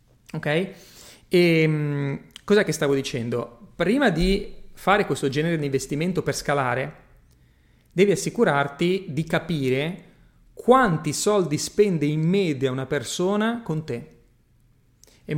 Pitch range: 140-195 Hz